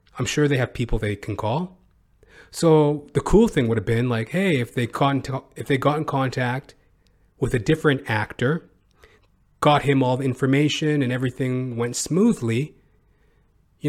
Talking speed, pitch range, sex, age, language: 170 wpm, 110-150 Hz, male, 30-49, English